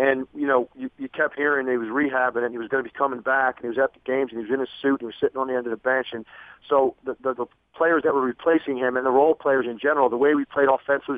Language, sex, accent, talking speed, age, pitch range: English, male, American, 330 wpm, 40-59, 130-160 Hz